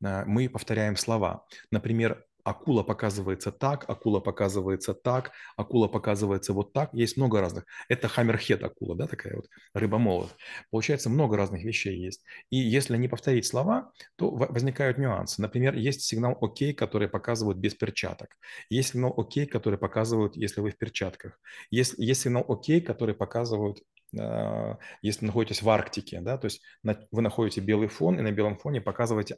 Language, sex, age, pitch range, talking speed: Russian, male, 30-49, 105-125 Hz, 155 wpm